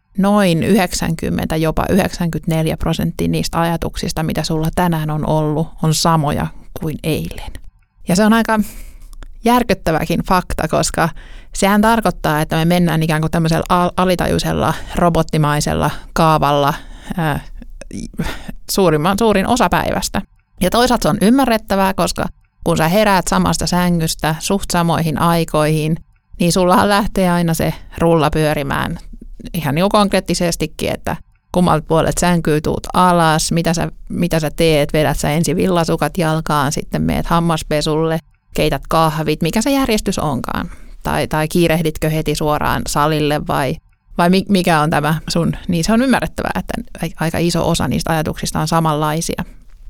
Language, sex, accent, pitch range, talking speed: Finnish, male, native, 155-185 Hz, 135 wpm